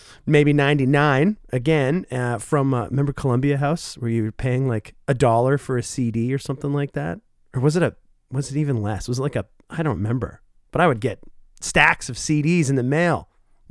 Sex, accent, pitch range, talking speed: male, American, 125-160 Hz, 220 wpm